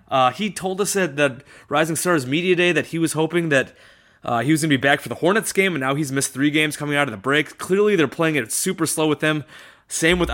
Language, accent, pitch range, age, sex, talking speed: English, American, 135-165 Hz, 30-49, male, 275 wpm